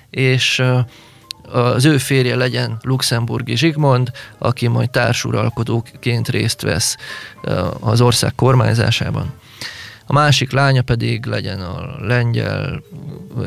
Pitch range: 115-140 Hz